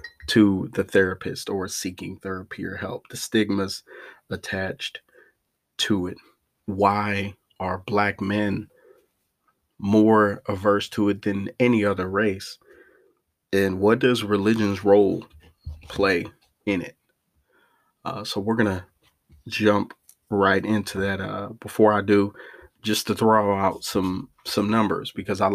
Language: English